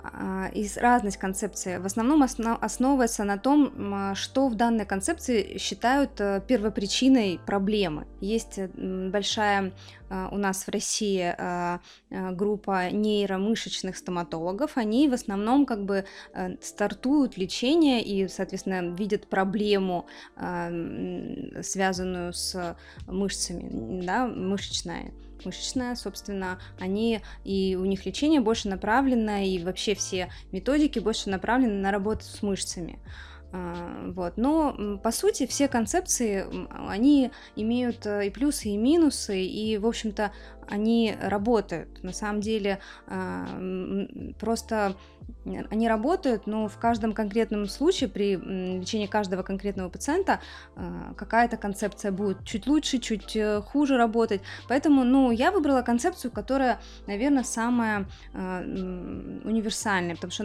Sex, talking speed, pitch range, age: female, 110 wpm, 190-235 Hz, 20-39